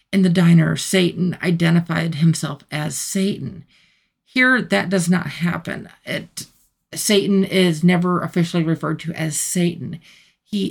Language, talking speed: English, 130 wpm